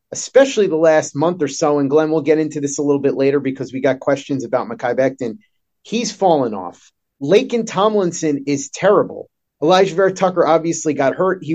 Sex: male